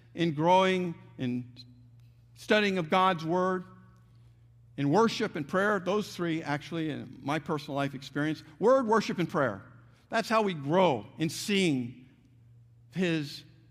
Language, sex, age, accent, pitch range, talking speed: English, male, 50-69, American, 120-175 Hz, 130 wpm